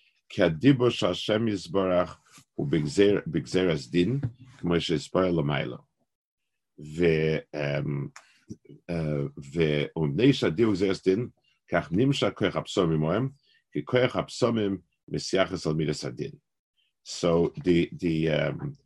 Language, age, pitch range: English, 50-69, 85-125 Hz